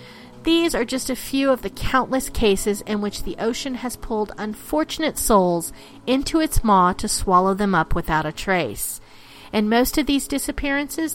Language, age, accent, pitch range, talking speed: English, 40-59, American, 190-275 Hz, 170 wpm